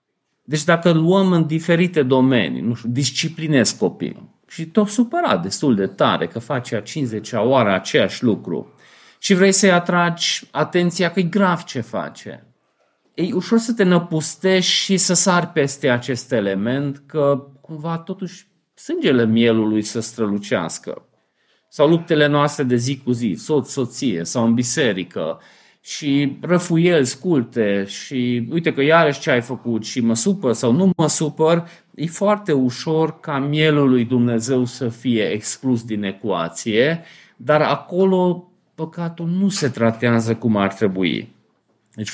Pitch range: 115-170 Hz